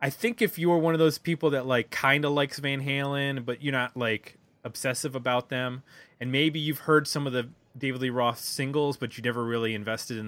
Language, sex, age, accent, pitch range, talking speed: English, male, 20-39, American, 115-145 Hz, 235 wpm